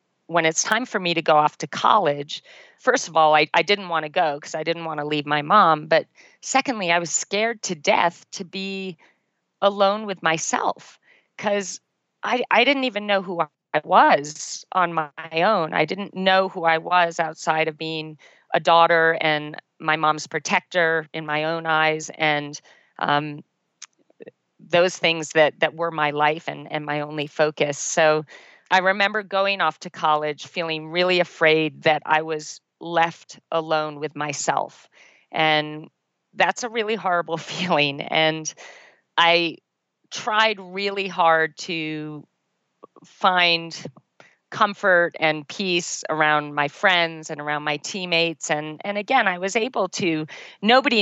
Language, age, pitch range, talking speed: English, 40-59, 150-185 Hz, 155 wpm